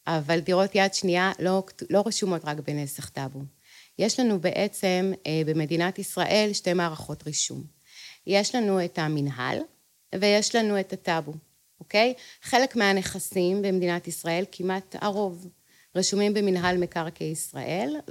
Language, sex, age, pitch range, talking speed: Hebrew, female, 30-49, 165-210 Hz, 125 wpm